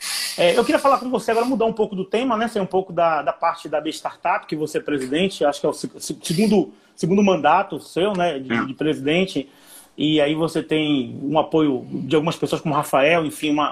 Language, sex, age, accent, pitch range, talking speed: Portuguese, male, 30-49, Brazilian, 160-200 Hz, 220 wpm